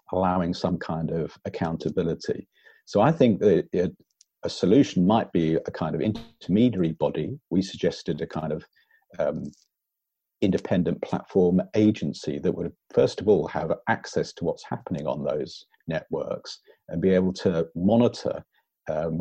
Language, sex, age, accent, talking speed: English, male, 50-69, British, 145 wpm